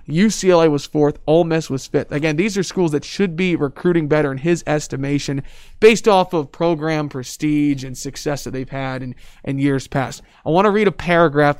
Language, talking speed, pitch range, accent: English, 200 wpm, 140-180 Hz, American